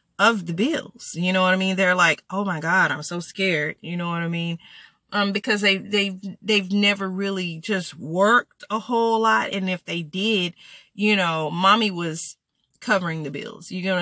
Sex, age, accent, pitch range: female, 30-49, American, 165-200 Hz